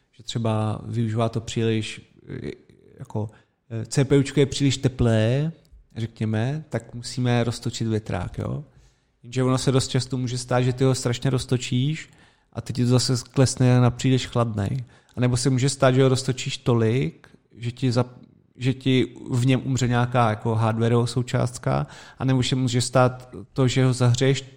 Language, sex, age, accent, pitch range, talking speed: Czech, male, 30-49, native, 120-135 Hz, 165 wpm